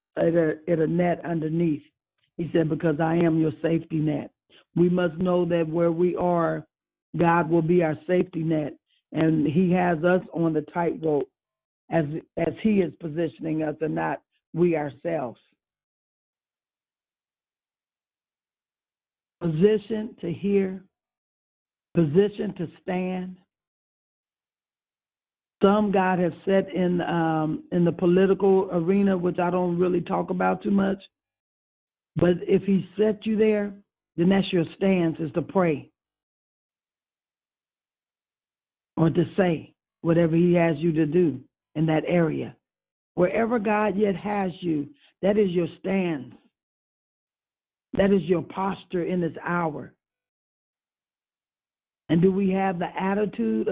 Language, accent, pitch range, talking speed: English, American, 160-190 Hz, 125 wpm